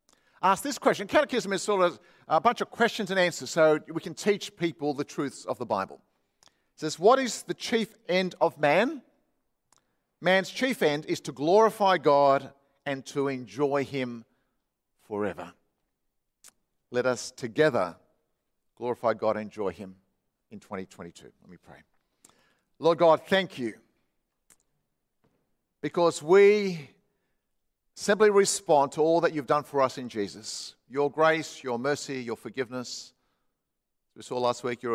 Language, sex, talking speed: English, male, 145 wpm